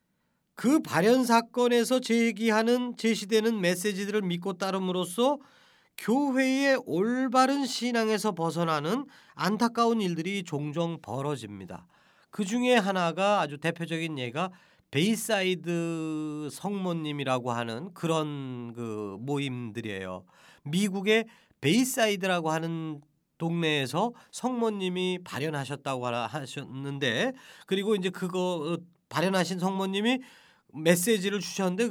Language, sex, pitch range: Korean, male, 155-225 Hz